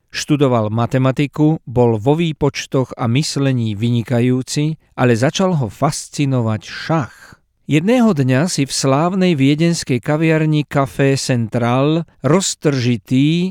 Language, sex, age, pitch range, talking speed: Slovak, male, 50-69, 120-155 Hz, 100 wpm